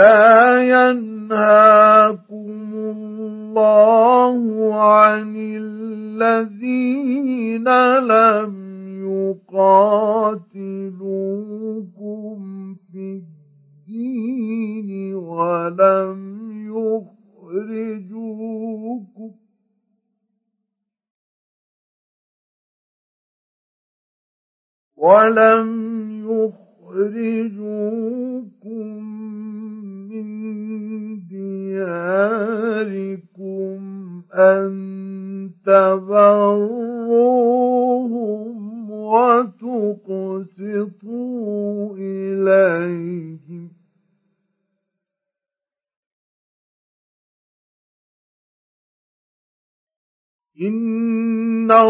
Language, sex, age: Arabic, male, 50-69